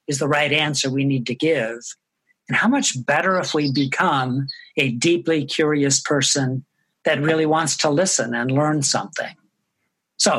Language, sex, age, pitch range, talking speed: English, male, 50-69, 140-170 Hz, 160 wpm